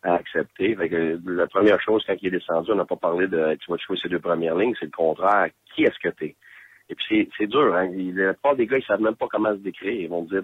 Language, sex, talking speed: French, male, 285 wpm